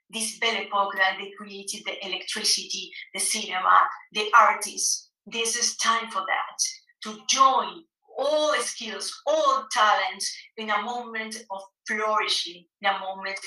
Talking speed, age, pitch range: 140 wpm, 30-49, 215-270 Hz